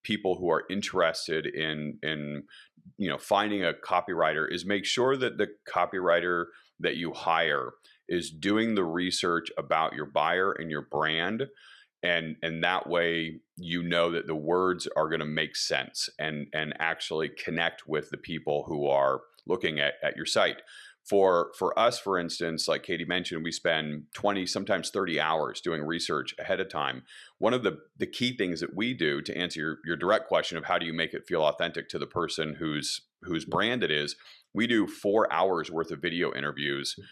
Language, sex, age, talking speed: English, male, 40-59, 190 wpm